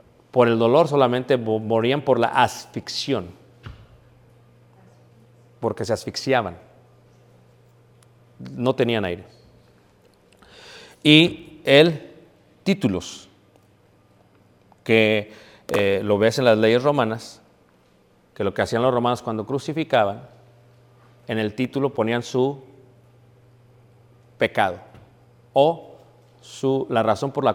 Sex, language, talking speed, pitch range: male, Spanish, 95 wpm, 115-160 Hz